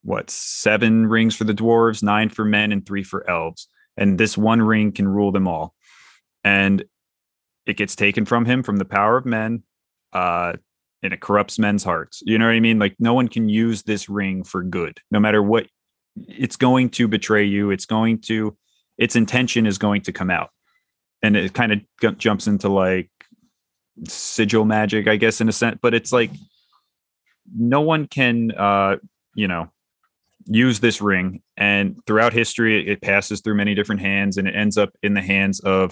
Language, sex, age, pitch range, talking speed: English, male, 30-49, 100-115 Hz, 190 wpm